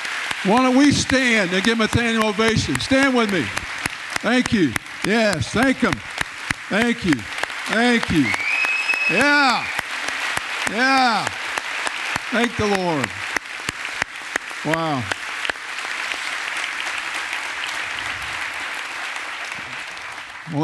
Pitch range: 135-185 Hz